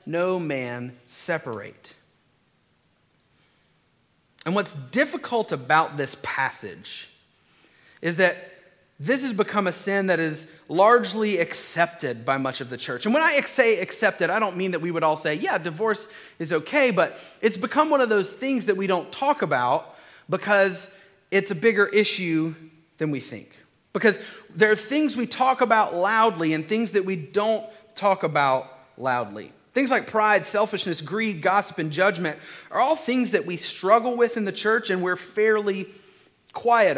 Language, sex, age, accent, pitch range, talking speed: English, male, 30-49, American, 170-220 Hz, 160 wpm